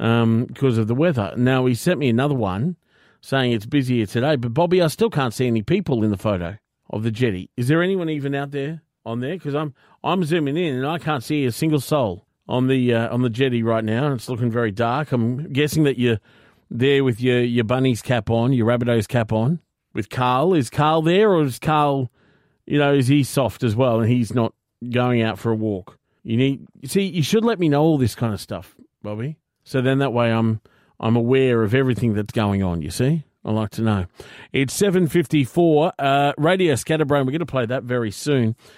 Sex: male